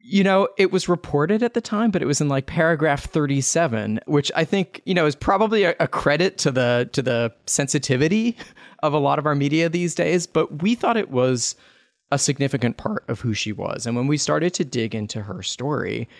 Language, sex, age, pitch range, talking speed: English, male, 30-49, 115-150 Hz, 215 wpm